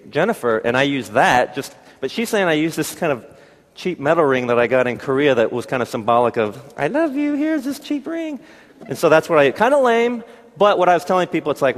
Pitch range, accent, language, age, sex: 135-180 Hz, American, Korean, 30-49, male